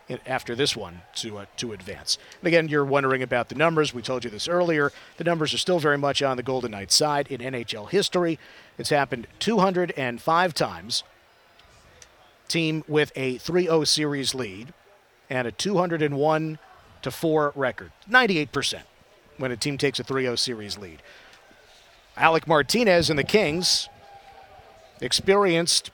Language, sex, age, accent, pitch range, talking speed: English, male, 50-69, American, 125-165 Hz, 145 wpm